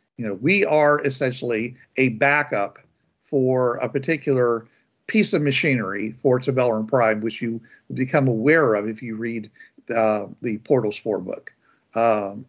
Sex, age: male, 50-69